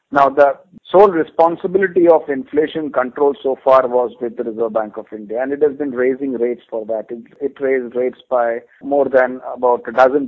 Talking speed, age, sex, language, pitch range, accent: 200 wpm, 50-69, male, English, 125-155 Hz, Indian